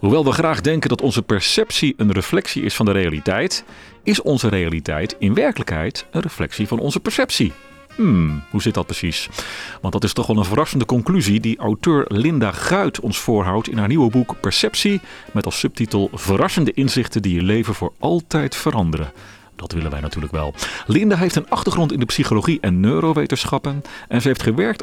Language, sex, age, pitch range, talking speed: Dutch, male, 40-59, 95-140 Hz, 185 wpm